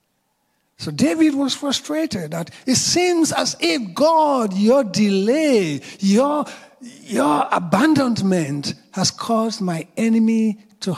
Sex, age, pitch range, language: male, 60-79, 160-220 Hz, English